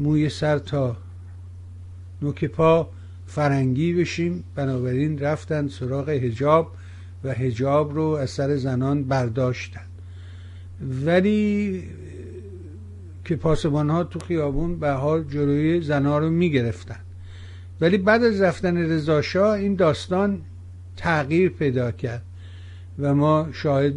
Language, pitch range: Persian, 100-155 Hz